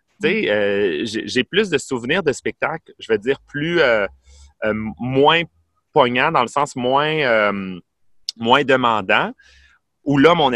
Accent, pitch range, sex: Canadian, 110-145 Hz, male